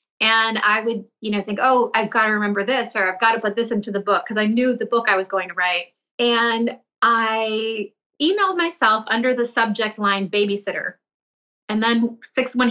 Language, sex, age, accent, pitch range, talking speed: English, female, 30-49, American, 205-250 Hz, 210 wpm